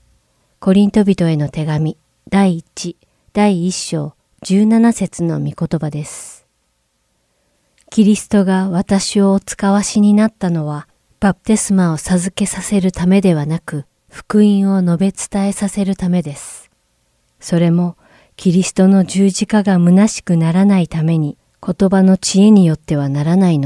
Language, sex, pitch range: English, female, 150-195 Hz